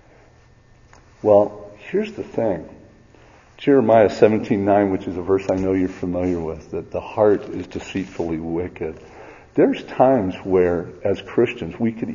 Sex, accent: male, American